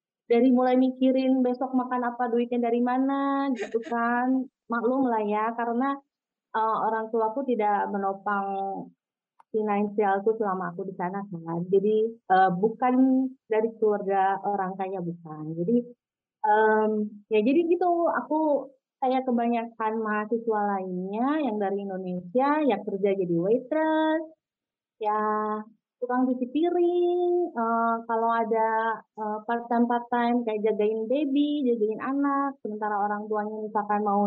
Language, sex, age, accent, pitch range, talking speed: Indonesian, female, 30-49, native, 210-260 Hz, 115 wpm